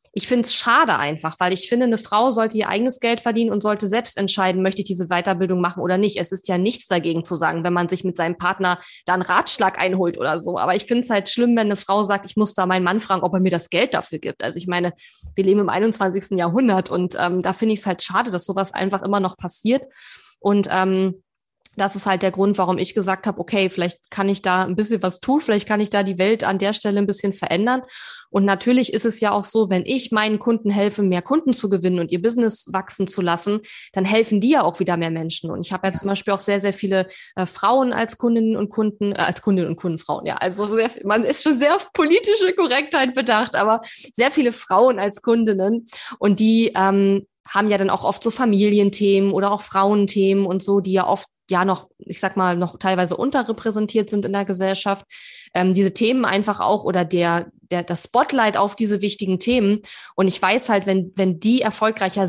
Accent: German